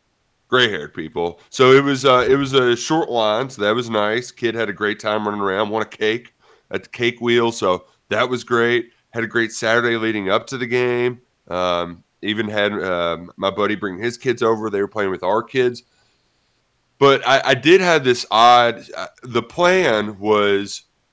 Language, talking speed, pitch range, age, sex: English, 200 wpm, 105-130 Hz, 30-49, male